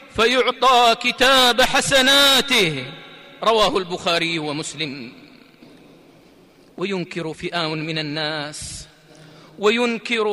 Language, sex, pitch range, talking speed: Arabic, male, 185-250 Hz, 65 wpm